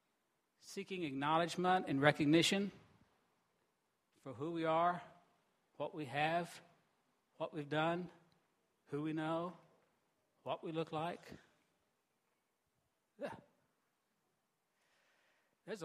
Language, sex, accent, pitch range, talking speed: English, male, American, 145-185 Hz, 85 wpm